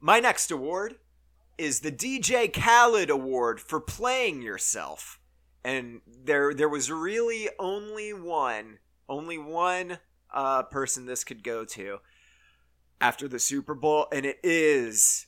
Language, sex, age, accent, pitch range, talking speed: English, male, 30-49, American, 125-180 Hz, 130 wpm